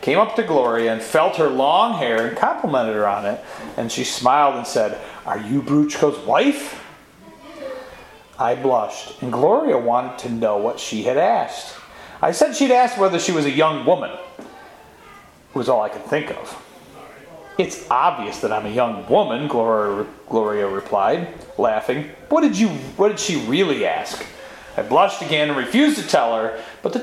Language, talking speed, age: English, 180 wpm, 40-59